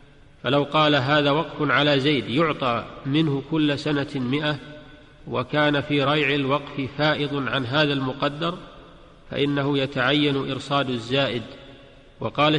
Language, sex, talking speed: Arabic, male, 115 wpm